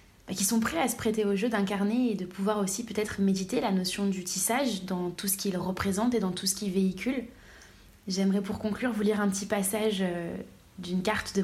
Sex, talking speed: female, 215 wpm